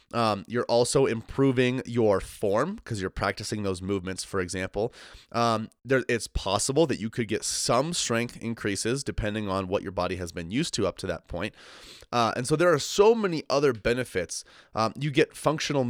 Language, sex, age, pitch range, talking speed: English, male, 30-49, 100-125 Hz, 185 wpm